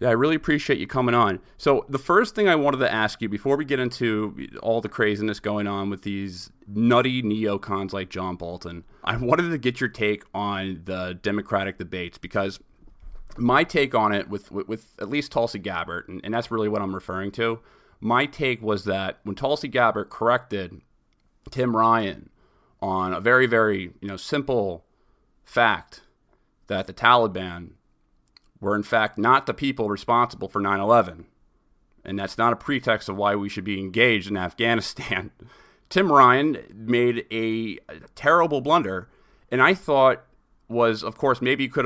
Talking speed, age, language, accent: 170 wpm, 30-49, English, American